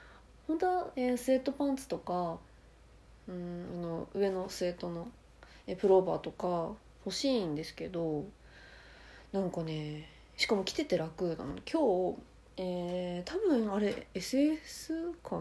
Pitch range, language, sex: 175-245 Hz, Japanese, female